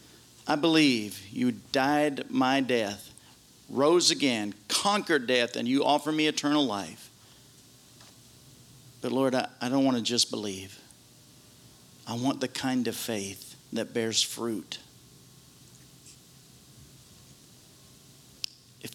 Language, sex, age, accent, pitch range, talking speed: English, male, 50-69, American, 110-135 Hz, 110 wpm